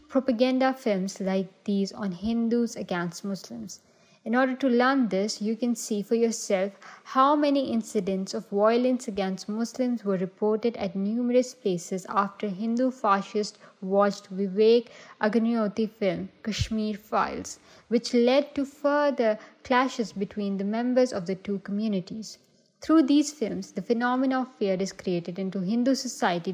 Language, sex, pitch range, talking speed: Urdu, female, 200-255 Hz, 140 wpm